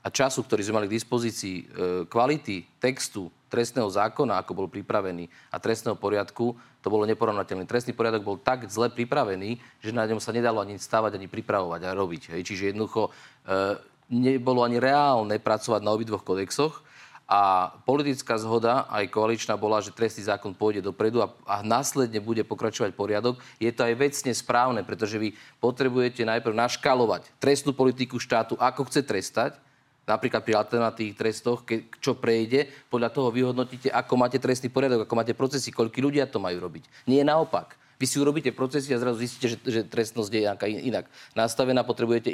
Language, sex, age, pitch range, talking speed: Slovak, male, 30-49, 110-130 Hz, 170 wpm